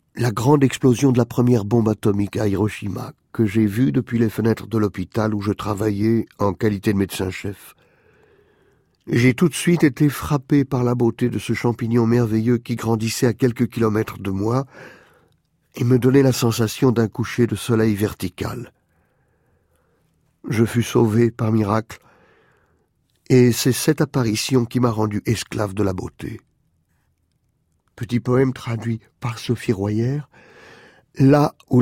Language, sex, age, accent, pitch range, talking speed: French, male, 50-69, French, 110-125 Hz, 150 wpm